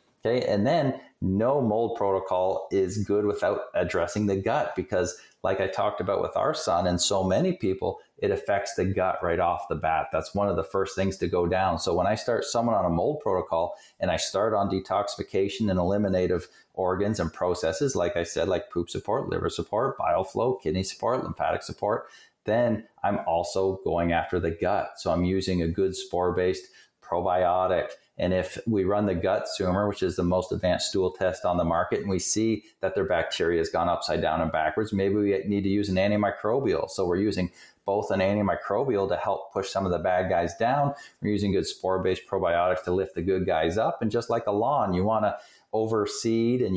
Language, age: English, 30-49